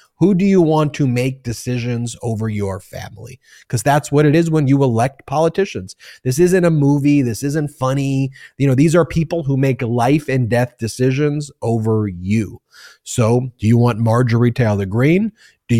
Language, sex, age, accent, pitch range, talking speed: English, male, 30-49, American, 115-135 Hz, 180 wpm